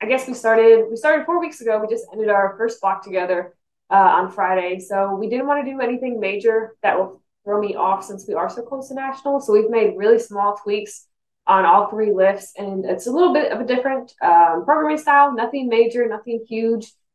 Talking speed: 225 wpm